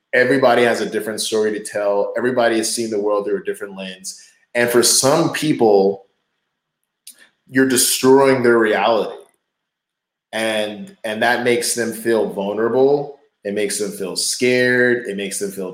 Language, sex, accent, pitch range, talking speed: English, male, American, 105-130 Hz, 155 wpm